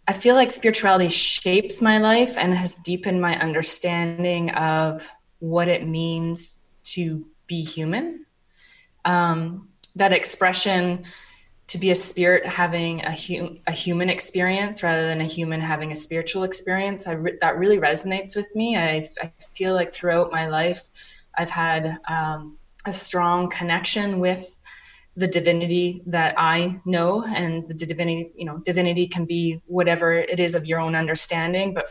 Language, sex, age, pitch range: English, female, 20-39, 165-185 Hz